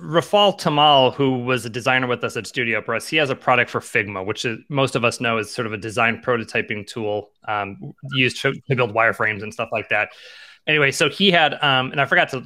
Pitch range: 120-140 Hz